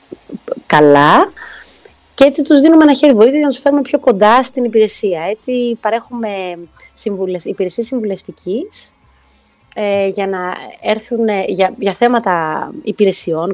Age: 20-39